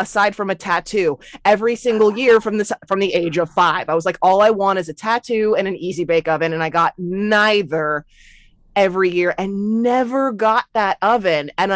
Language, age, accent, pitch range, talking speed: English, 20-39, American, 170-220 Hz, 200 wpm